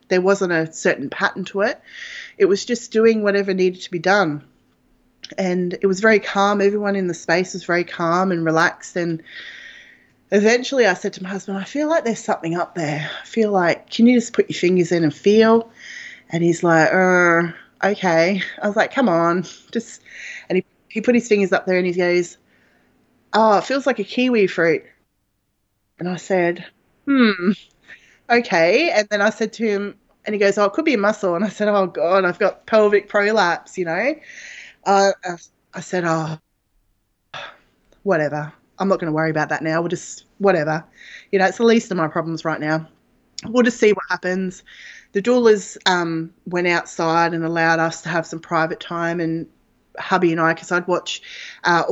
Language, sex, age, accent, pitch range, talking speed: English, female, 20-39, Australian, 170-210 Hz, 195 wpm